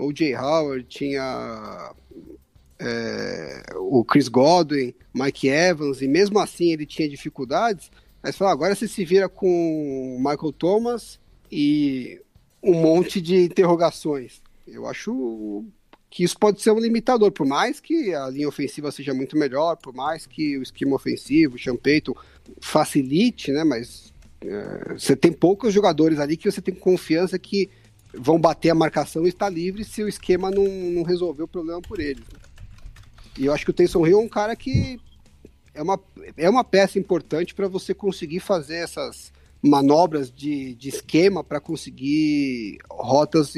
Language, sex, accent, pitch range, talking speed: Portuguese, male, Brazilian, 135-185 Hz, 160 wpm